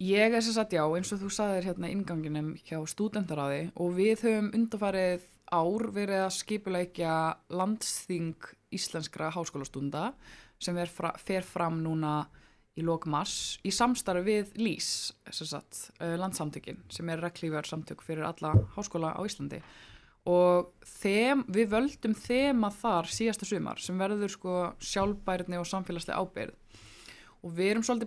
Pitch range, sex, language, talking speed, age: 160-205 Hz, female, English, 140 wpm, 20-39